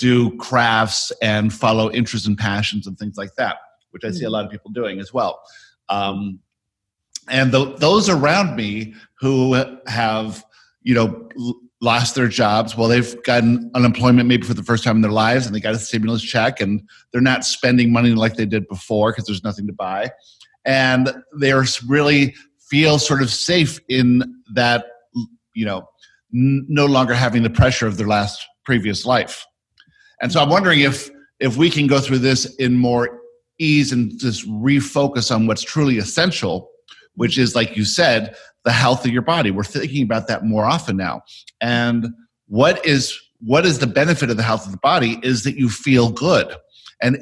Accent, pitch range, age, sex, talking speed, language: American, 110-135 Hz, 50-69, male, 180 wpm, English